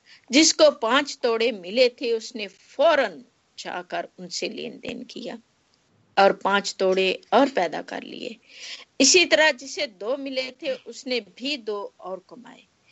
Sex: female